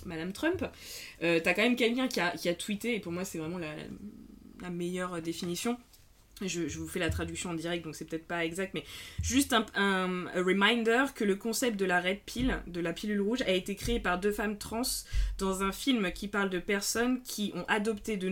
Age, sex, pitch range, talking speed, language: 20-39, female, 180-235 Hz, 225 wpm, French